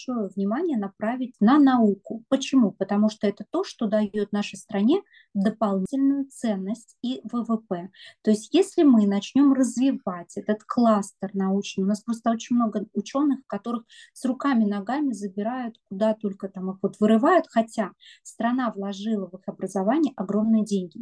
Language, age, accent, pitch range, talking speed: Russian, 30-49, native, 200-240 Hz, 145 wpm